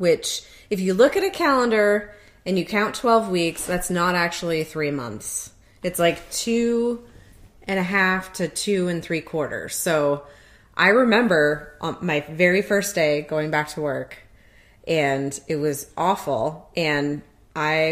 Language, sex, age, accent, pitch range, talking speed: English, female, 30-49, American, 155-205 Hz, 155 wpm